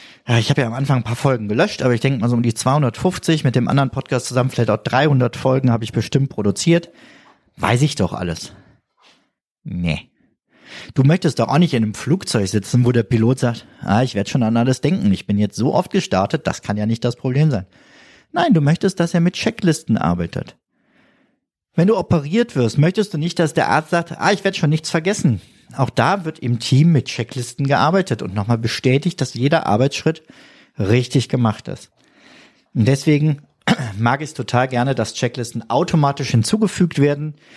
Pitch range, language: 115-160 Hz, German